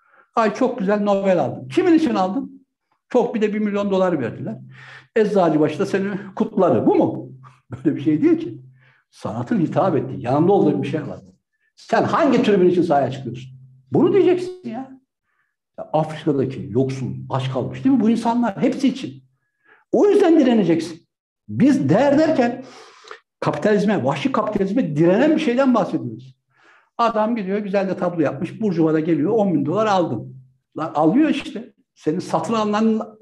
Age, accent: 60-79, native